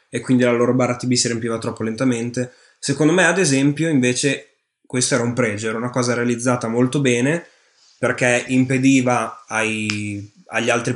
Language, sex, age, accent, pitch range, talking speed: Italian, male, 10-29, native, 115-130 Hz, 160 wpm